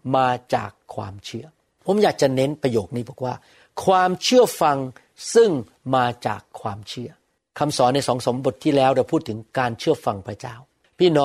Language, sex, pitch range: Thai, male, 120-160 Hz